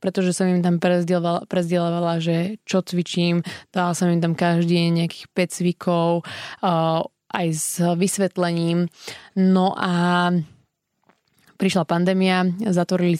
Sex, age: female, 20-39